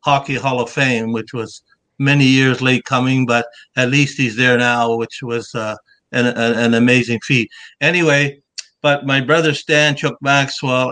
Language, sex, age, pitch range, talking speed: English, male, 60-79, 115-135 Hz, 165 wpm